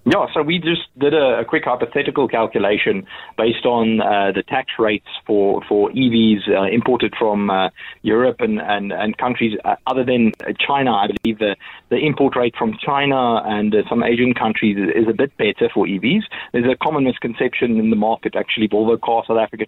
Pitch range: 110-140 Hz